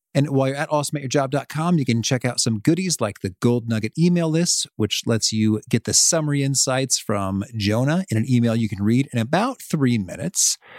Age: 40-59